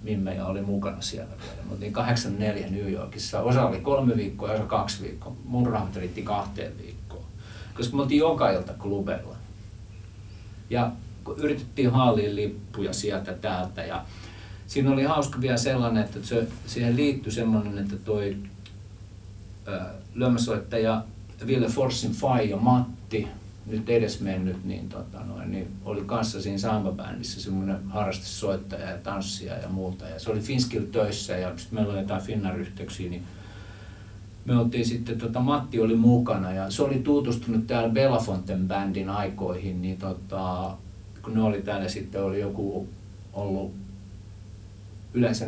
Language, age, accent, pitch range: Finnish, 50-69, native, 95-115 Hz